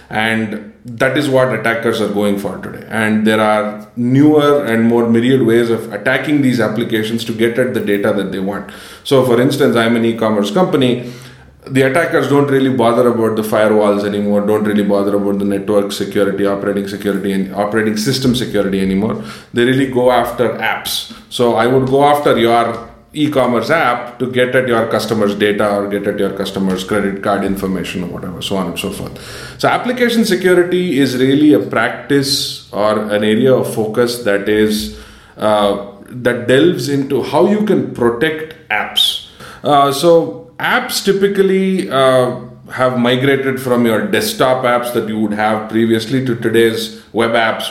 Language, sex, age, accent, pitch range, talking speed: English, male, 20-39, Indian, 105-130 Hz, 170 wpm